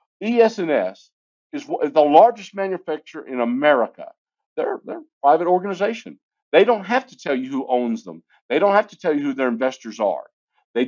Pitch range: 125-180 Hz